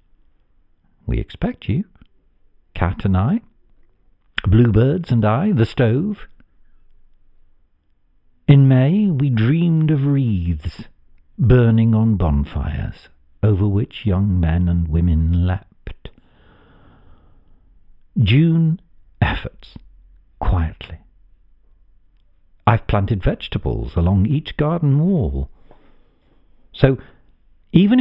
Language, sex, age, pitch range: English, male, 60-79, 80-115 Hz